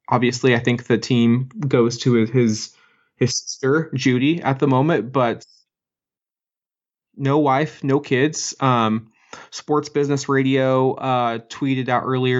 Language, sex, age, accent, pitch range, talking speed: English, male, 20-39, American, 115-135 Hz, 130 wpm